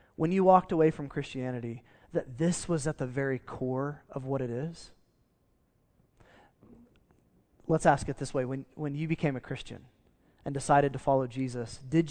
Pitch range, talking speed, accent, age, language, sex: 130-170 Hz, 170 wpm, American, 20-39, English, male